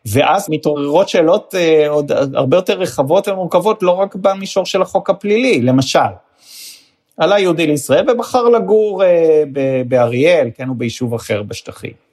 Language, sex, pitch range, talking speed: Hebrew, male, 130-195 Hz, 135 wpm